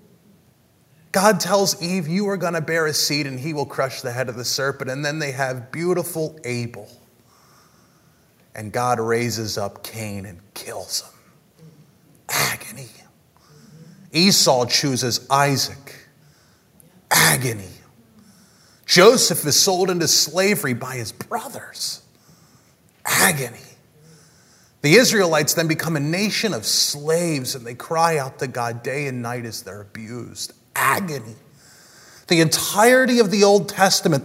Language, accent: English, American